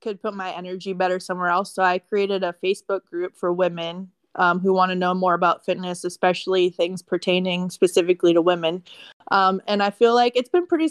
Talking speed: 205 wpm